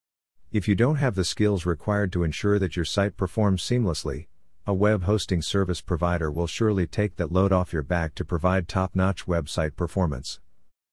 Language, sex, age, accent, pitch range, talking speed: English, male, 50-69, American, 85-105 Hz, 175 wpm